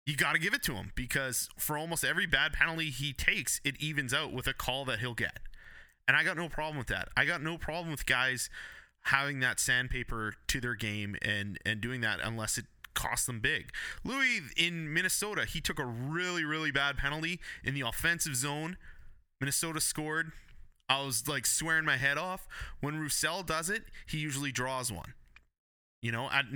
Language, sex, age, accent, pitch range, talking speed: English, male, 20-39, American, 120-160 Hz, 190 wpm